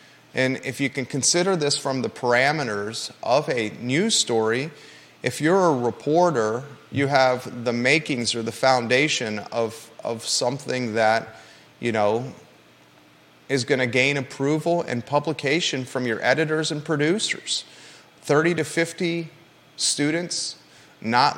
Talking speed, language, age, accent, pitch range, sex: 130 wpm, English, 30-49, American, 125-155 Hz, male